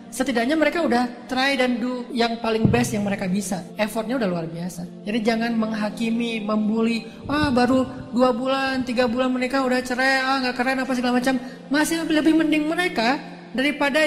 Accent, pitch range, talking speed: native, 205-260 Hz, 180 wpm